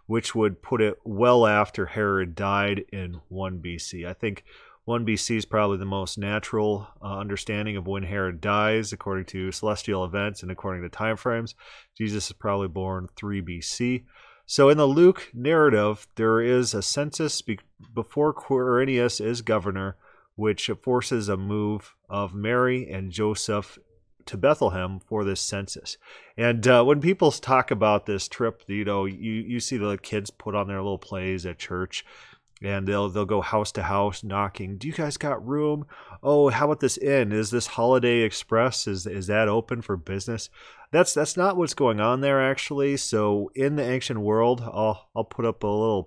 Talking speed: 180 wpm